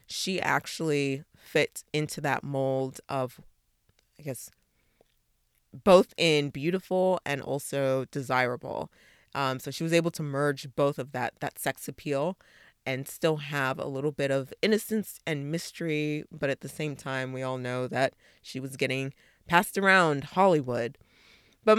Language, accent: English, American